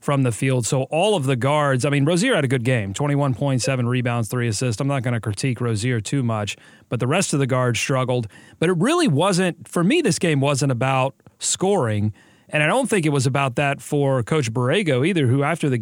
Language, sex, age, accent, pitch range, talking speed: English, male, 30-49, American, 130-170 Hz, 230 wpm